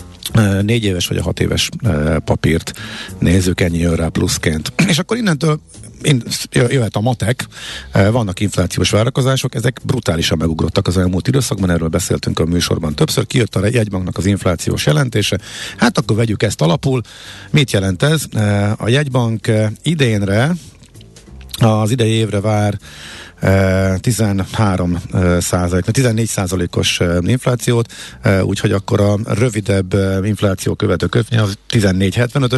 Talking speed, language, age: 115 wpm, Hungarian, 50-69